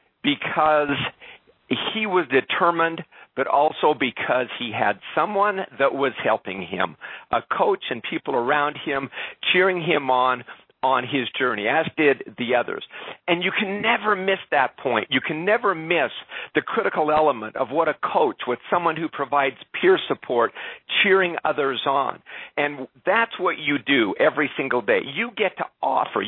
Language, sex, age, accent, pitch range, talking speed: English, male, 50-69, American, 135-180 Hz, 160 wpm